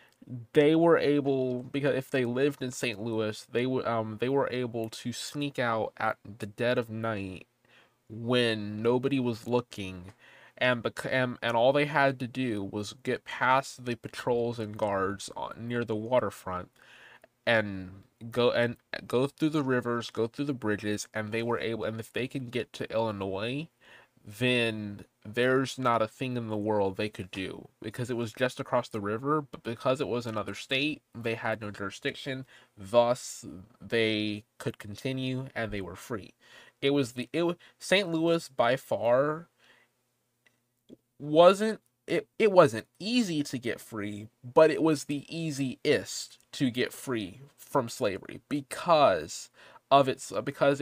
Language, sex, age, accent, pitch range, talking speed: English, male, 20-39, American, 110-135 Hz, 160 wpm